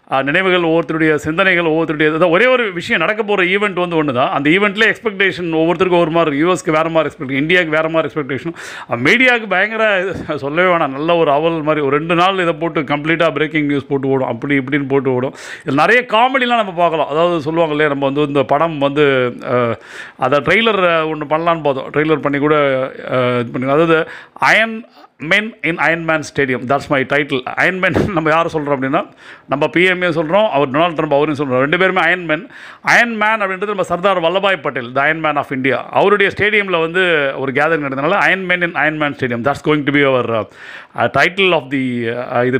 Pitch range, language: 145-180 Hz, Tamil